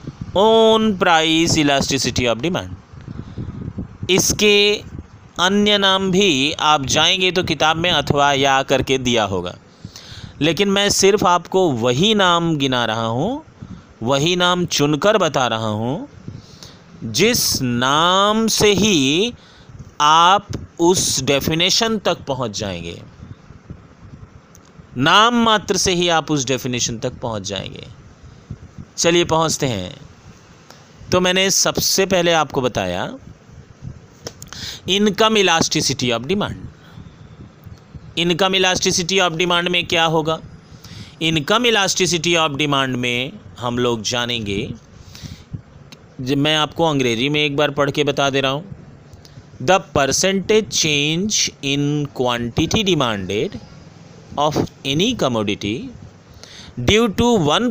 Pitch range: 130-185 Hz